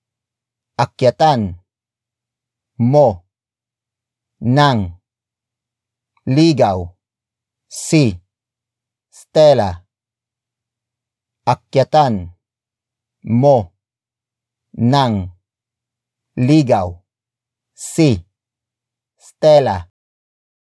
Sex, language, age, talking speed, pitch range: male, English, 40-59, 35 wpm, 115-130 Hz